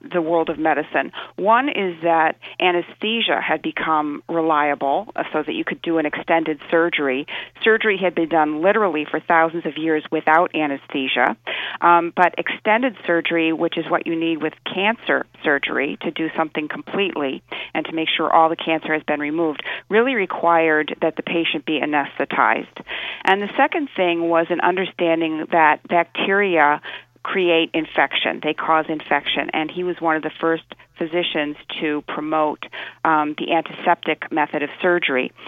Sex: female